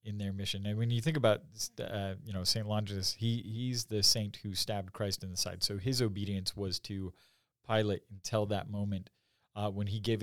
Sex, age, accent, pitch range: male, 30-49, American, 95-110 Hz